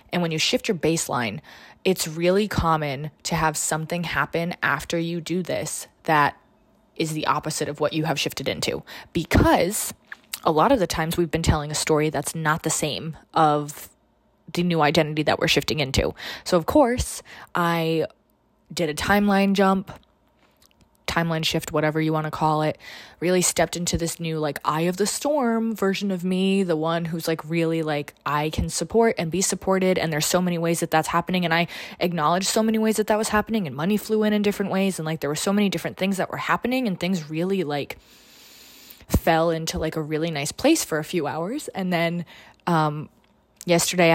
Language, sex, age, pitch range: English, female, 20-39, 155-185 Hz